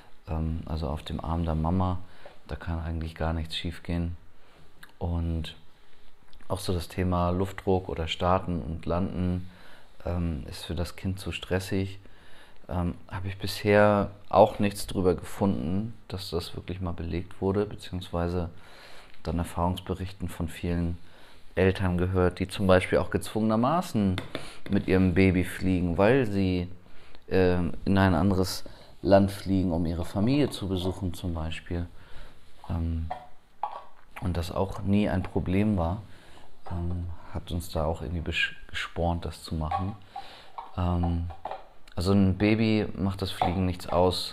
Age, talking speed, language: 30-49, 140 wpm, German